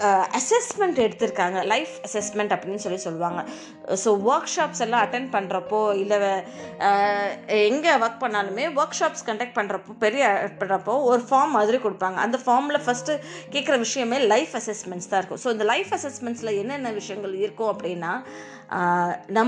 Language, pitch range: Tamil, 200-260 Hz